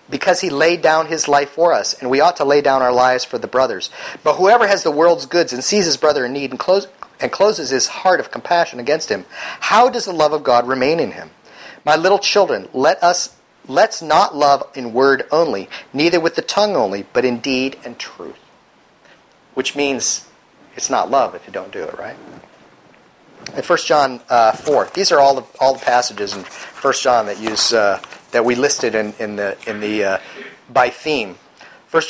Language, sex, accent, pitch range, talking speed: English, male, American, 130-185 Hz, 210 wpm